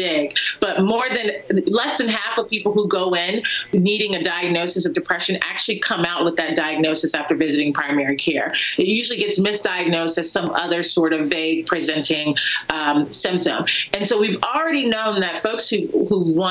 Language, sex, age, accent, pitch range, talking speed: English, female, 30-49, American, 165-215 Hz, 180 wpm